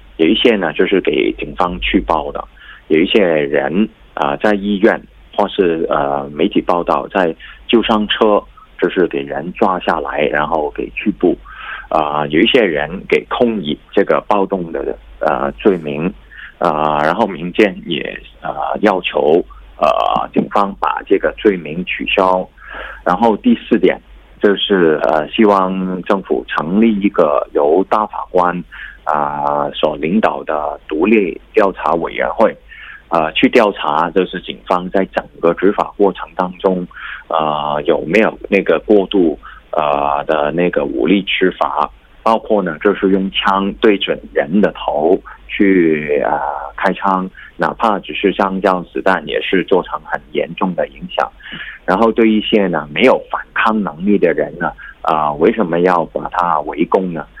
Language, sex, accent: Korean, male, Chinese